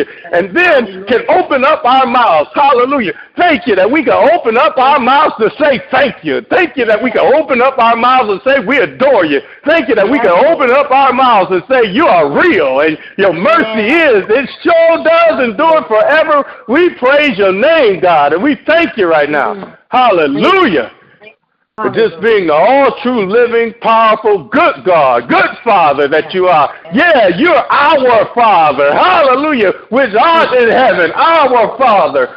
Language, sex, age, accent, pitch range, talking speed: English, male, 50-69, American, 230-325 Hz, 175 wpm